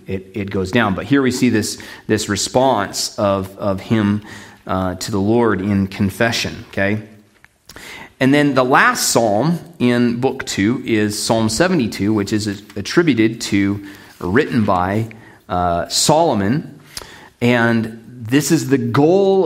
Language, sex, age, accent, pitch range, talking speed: English, male, 30-49, American, 100-125 Hz, 140 wpm